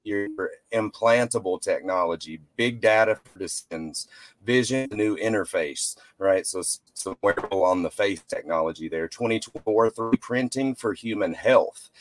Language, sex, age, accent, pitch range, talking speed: English, male, 30-49, American, 105-125 Hz, 125 wpm